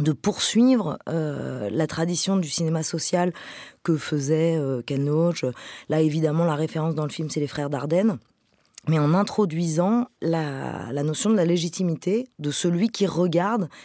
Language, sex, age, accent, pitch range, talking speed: French, female, 20-39, French, 165-220 Hz, 160 wpm